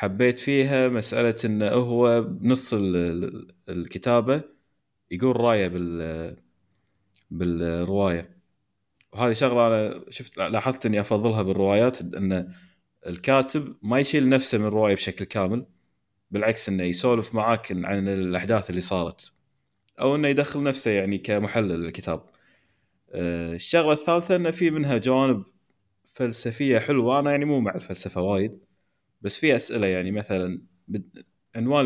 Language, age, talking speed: Arabic, 30-49, 115 wpm